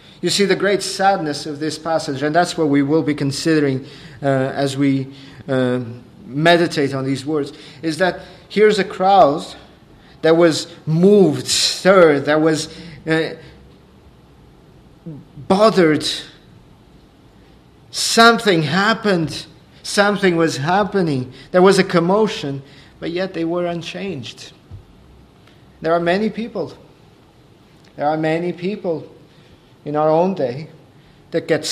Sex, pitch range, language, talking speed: male, 140-175 Hz, English, 120 wpm